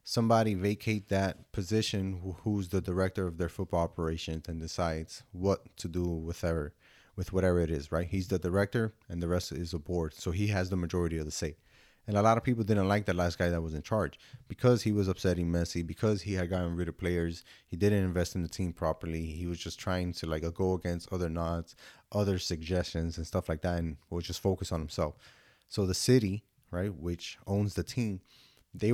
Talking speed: 220 wpm